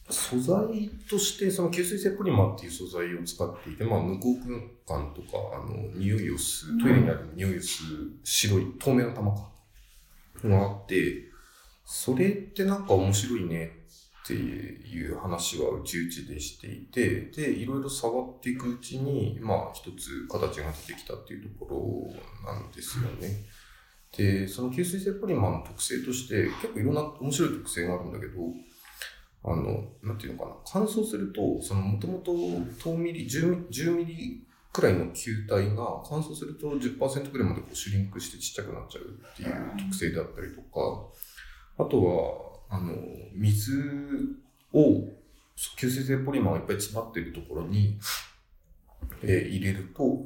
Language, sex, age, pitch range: Japanese, male, 40-59, 95-140 Hz